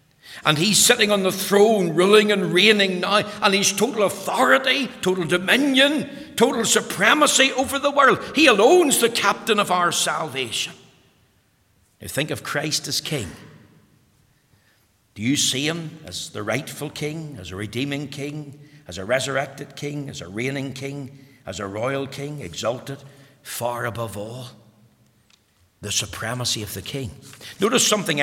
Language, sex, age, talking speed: English, male, 60-79, 145 wpm